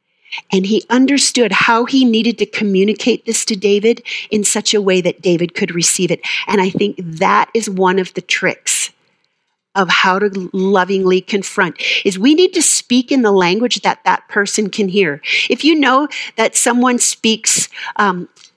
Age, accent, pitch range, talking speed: 40-59, American, 195-245 Hz, 175 wpm